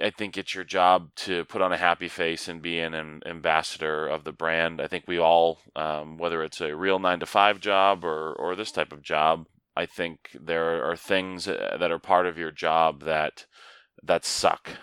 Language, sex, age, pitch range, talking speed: English, male, 20-39, 80-95 Hz, 200 wpm